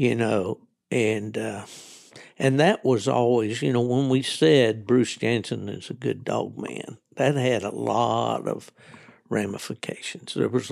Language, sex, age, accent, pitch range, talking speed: English, male, 60-79, American, 100-125 Hz, 155 wpm